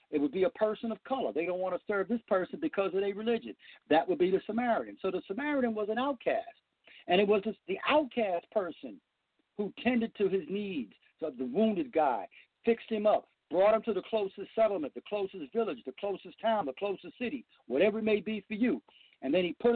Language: English